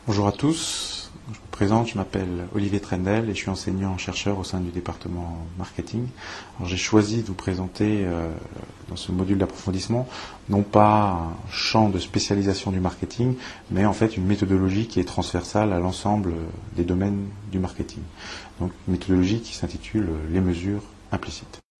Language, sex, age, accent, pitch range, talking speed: French, male, 30-49, French, 90-105 Hz, 160 wpm